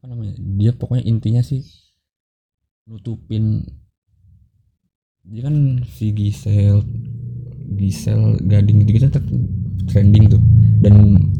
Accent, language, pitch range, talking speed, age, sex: native, Indonesian, 100-120 Hz, 85 wpm, 20-39, male